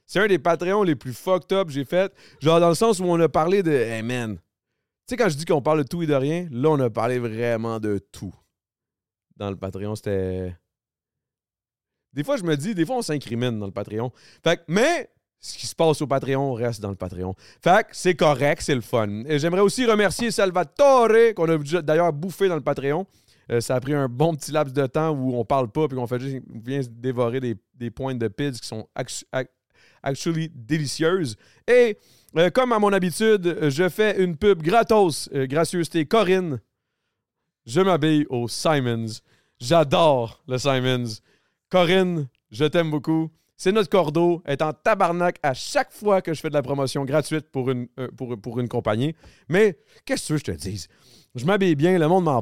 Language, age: French, 30-49